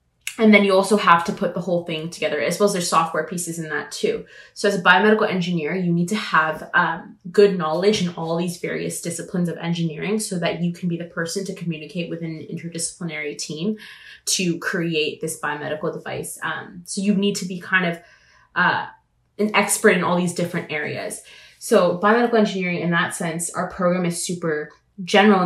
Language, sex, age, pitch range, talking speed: English, female, 20-39, 165-195 Hz, 200 wpm